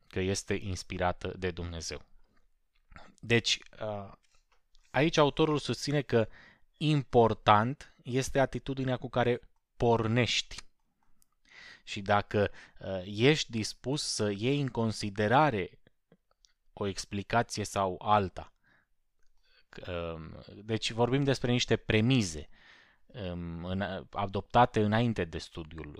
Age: 20-39